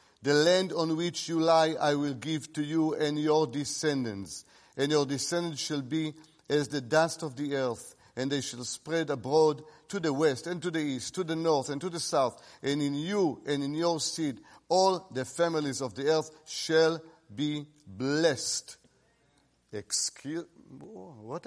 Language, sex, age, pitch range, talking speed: English, male, 50-69, 140-205 Hz, 175 wpm